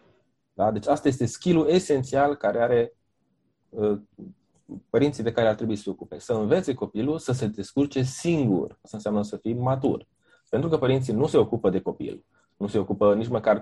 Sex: male